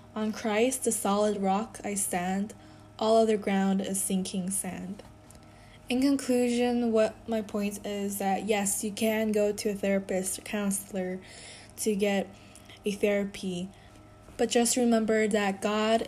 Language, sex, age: Korean, female, 10-29